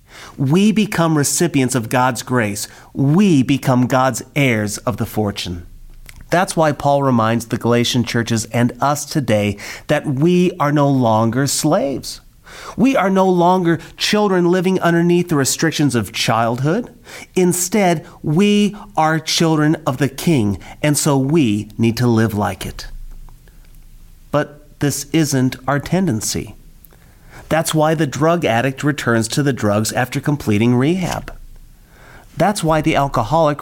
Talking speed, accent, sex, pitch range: 135 wpm, American, male, 115-155 Hz